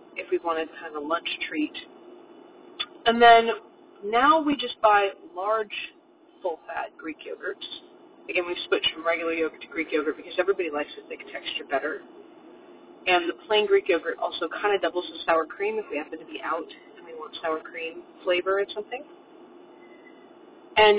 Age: 30-49